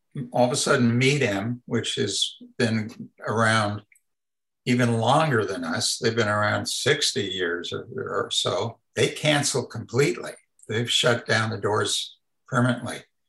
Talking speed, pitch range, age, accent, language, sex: 135 wpm, 115-130 Hz, 60-79, American, English, male